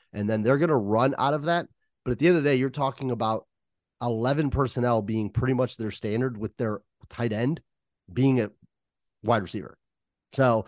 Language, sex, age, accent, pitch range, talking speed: English, male, 30-49, American, 110-130 Hz, 195 wpm